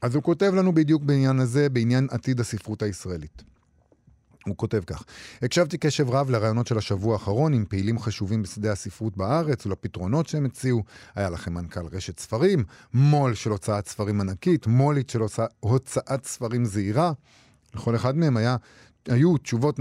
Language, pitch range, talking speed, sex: Hebrew, 105-150 Hz, 155 wpm, male